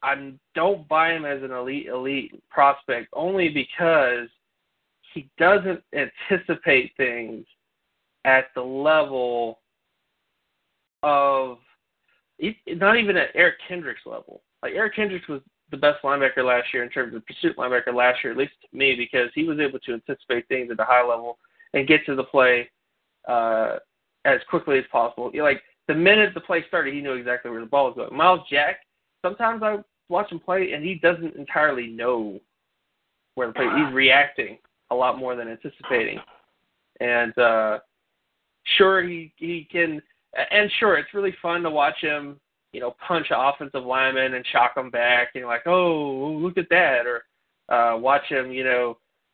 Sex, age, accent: male, 20-39, American